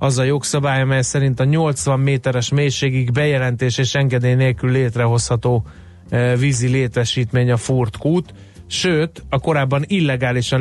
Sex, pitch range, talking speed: male, 120-145 Hz, 130 wpm